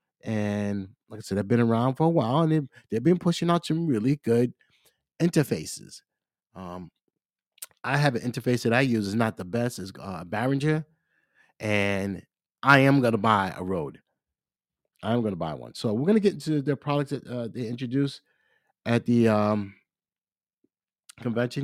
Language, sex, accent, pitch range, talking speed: English, male, American, 105-135 Hz, 170 wpm